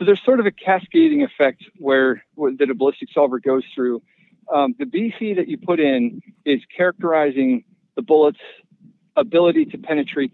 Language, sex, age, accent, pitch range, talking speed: English, male, 50-69, American, 130-205 Hz, 170 wpm